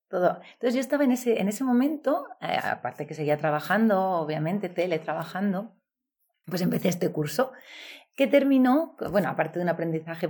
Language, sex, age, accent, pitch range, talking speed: English, female, 30-49, Spanish, 165-215 Hz, 165 wpm